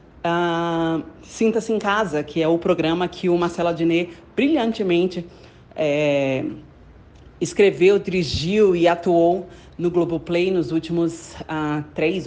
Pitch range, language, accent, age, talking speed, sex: 155-200 Hz, Portuguese, Brazilian, 30-49, 125 wpm, female